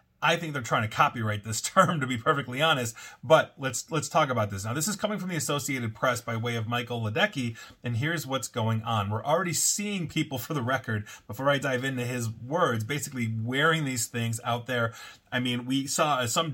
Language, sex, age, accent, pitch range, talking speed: English, male, 30-49, American, 115-145 Hz, 220 wpm